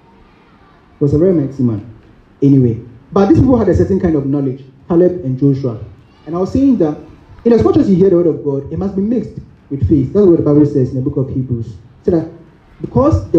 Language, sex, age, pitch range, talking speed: English, male, 30-49, 120-170 Hz, 230 wpm